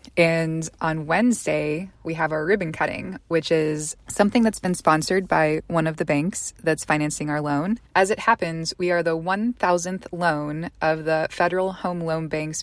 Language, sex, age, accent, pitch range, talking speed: English, female, 20-39, American, 155-180 Hz, 175 wpm